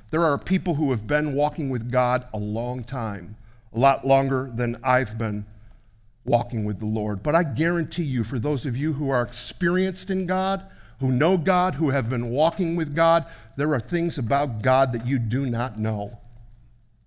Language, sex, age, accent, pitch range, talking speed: English, male, 50-69, American, 115-160 Hz, 190 wpm